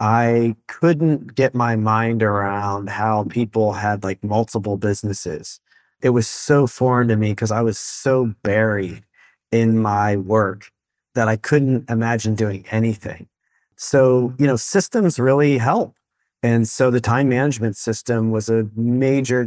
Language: English